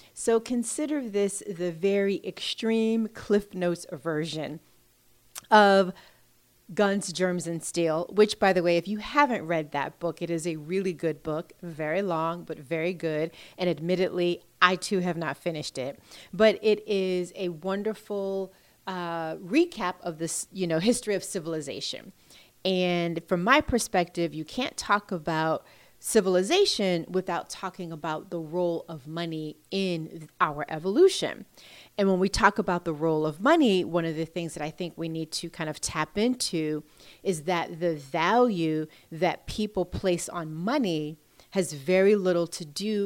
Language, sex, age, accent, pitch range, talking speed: English, female, 30-49, American, 165-200 Hz, 155 wpm